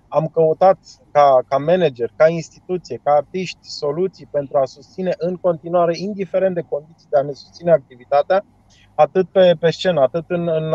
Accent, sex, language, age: native, male, Romanian, 30-49